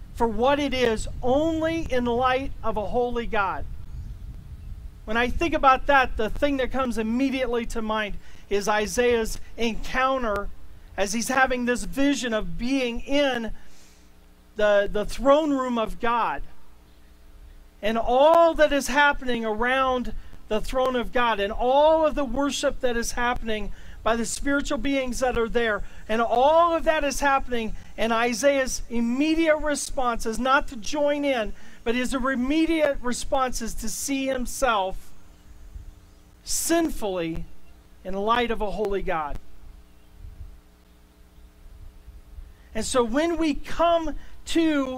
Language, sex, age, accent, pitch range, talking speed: English, male, 40-59, American, 215-275 Hz, 135 wpm